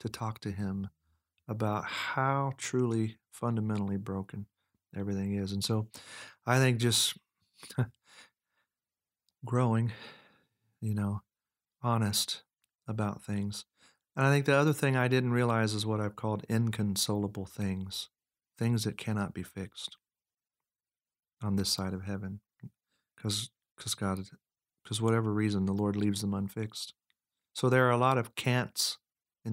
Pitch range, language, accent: 100-115 Hz, English, American